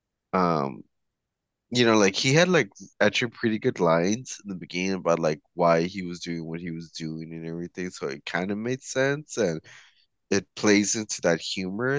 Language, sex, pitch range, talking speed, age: English, male, 85-110 Hz, 190 wpm, 20-39